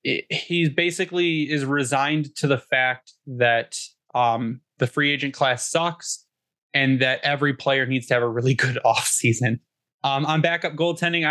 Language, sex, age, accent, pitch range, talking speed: English, male, 20-39, American, 130-160 Hz, 150 wpm